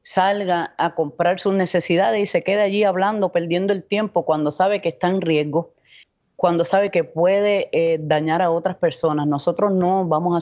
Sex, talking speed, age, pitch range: female, 185 wpm, 30-49, 145-175 Hz